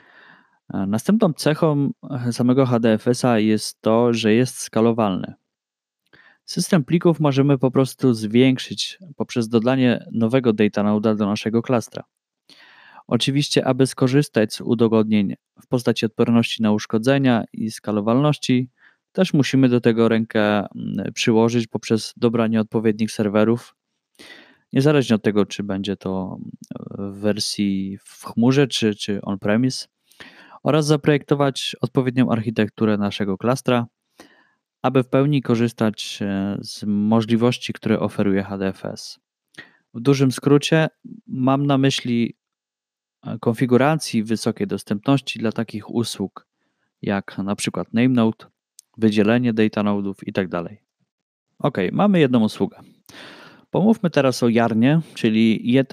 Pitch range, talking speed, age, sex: 110-135 Hz, 110 wpm, 20-39, male